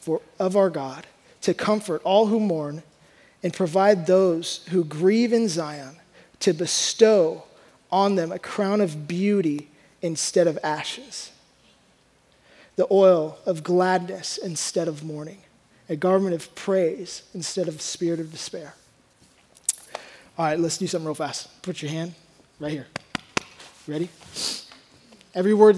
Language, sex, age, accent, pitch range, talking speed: English, male, 20-39, American, 165-200 Hz, 135 wpm